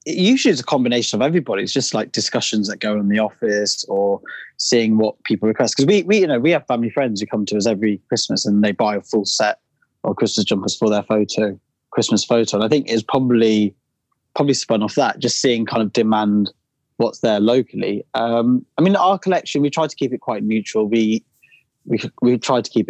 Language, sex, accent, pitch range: English, male, British, 105-130 Hz